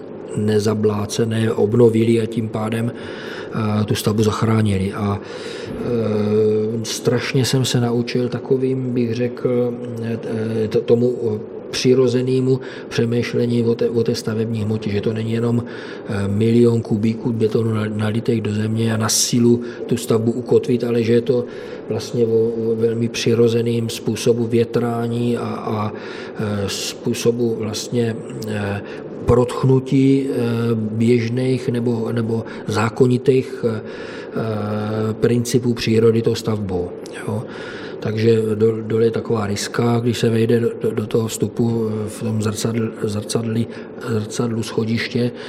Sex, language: male, Czech